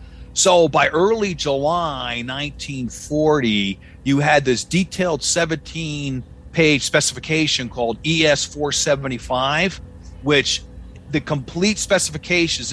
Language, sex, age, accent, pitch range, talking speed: English, male, 50-69, American, 120-155 Hz, 90 wpm